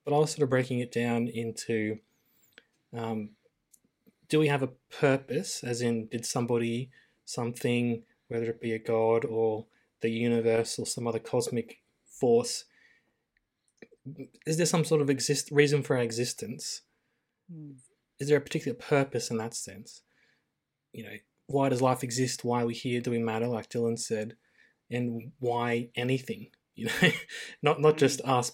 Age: 20-39